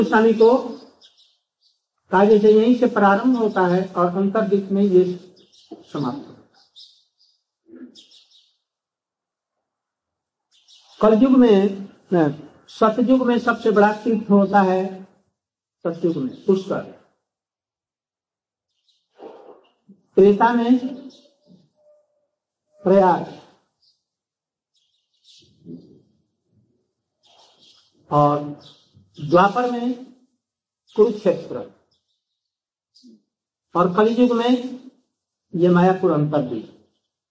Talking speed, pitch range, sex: 65 wpm, 175-240 Hz, male